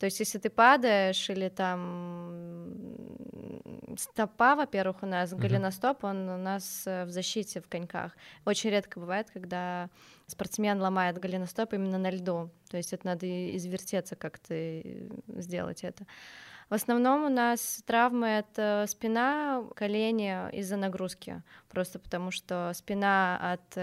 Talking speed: 130 wpm